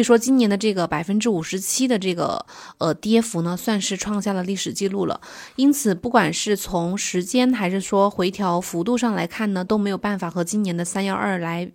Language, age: Chinese, 20-39